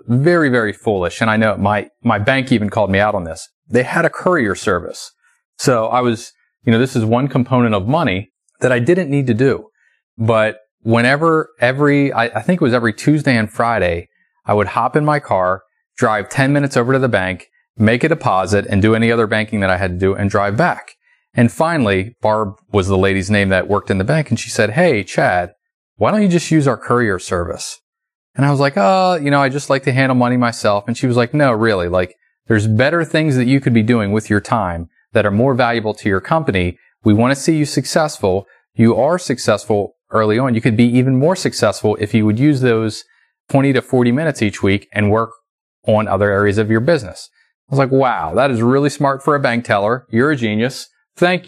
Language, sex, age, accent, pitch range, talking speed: English, male, 30-49, American, 105-135 Hz, 225 wpm